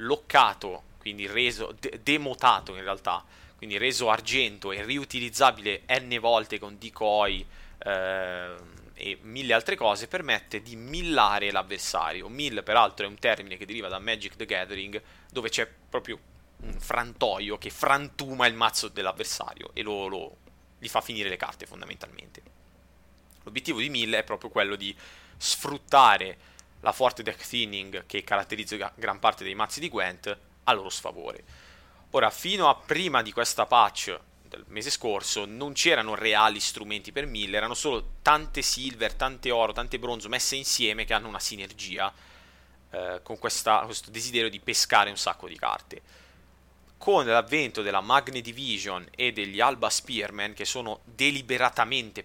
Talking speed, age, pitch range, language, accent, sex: 150 wpm, 20-39, 95-120 Hz, Italian, native, male